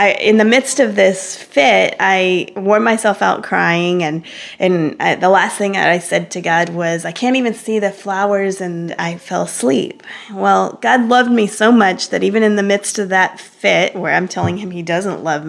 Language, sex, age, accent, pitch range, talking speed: English, female, 20-39, American, 180-210 Hz, 205 wpm